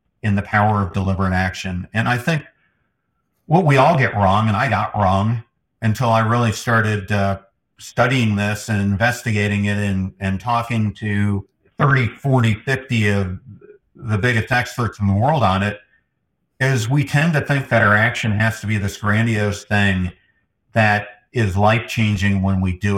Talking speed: 165 wpm